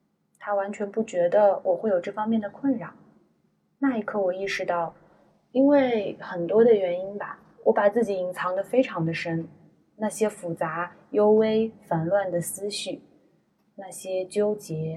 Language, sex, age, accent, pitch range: Chinese, female, 20-39, native, 175-215 Hz